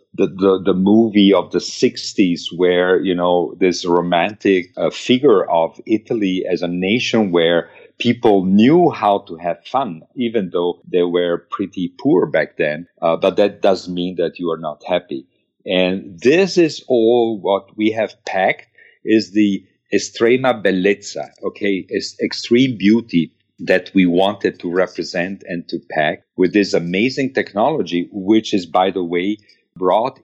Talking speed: 155 wpm